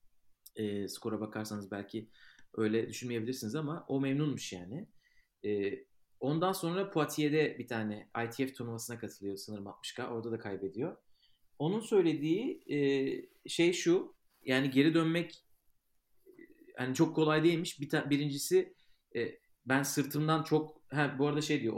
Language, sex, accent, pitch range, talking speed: Turkish, male, native, 115-145 Hz, 135 wpm